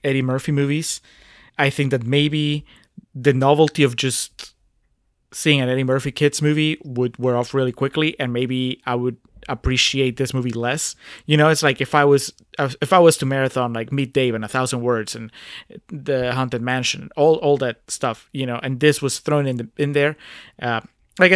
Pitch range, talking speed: 130-155 Hz, 195 wpm